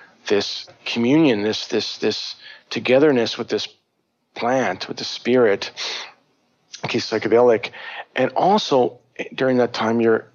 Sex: male